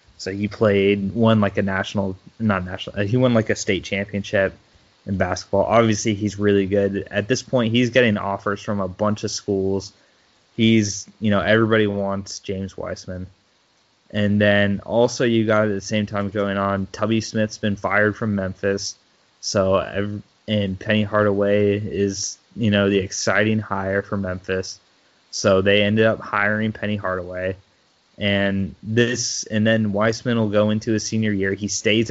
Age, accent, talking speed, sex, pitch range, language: 20-39, American, 165 wpm, male, 100-110 Hz, English